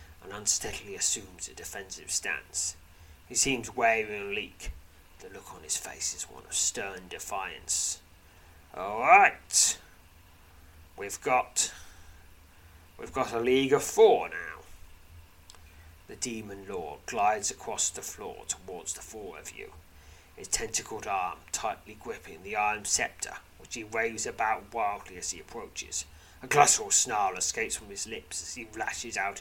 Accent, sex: British, male